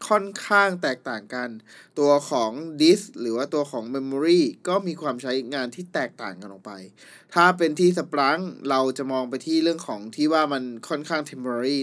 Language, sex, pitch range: Thai, male, 125-155 Hz